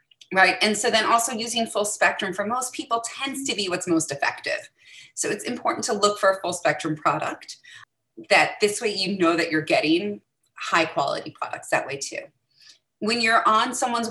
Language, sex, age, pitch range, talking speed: English, female, 30-49, 155-230 Hz, 190 wpm